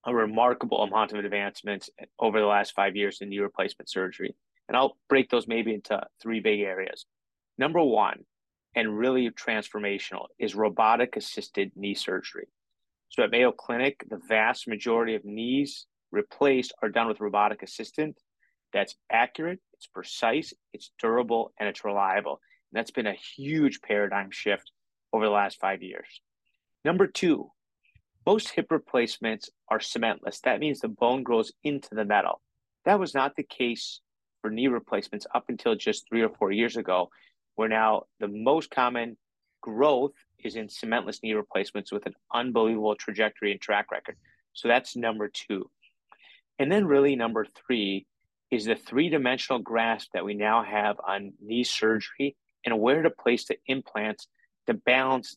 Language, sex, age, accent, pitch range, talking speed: English, male, 30-49, American, 105-125 Hz, 155 wpm